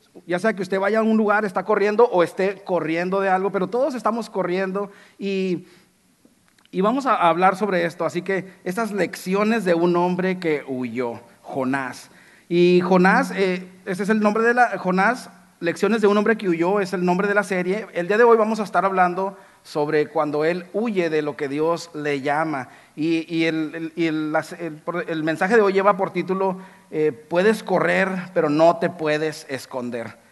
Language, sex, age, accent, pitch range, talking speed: Spanish, male, 40-59, Mexican, 160-195 Hz, 195 wpm